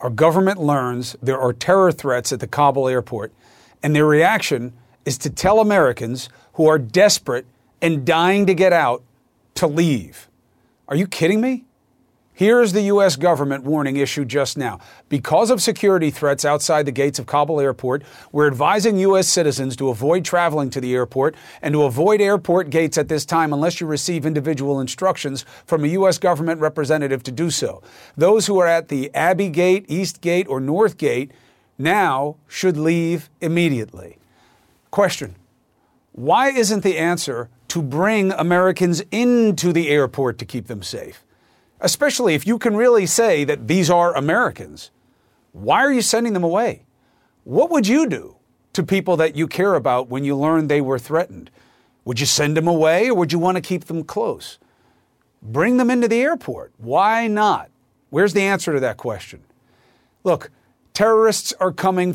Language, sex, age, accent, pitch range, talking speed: English, male, 40-59, American, 140-185 Hz, 170 wpm